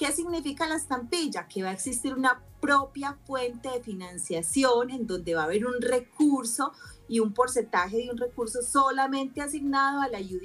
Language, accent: Spanish, Colombian